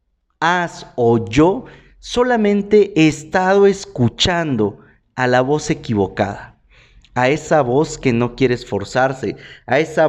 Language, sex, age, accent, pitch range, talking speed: Spanish, male, 40-59, Mexican, 125-185 Hz, 120 wpm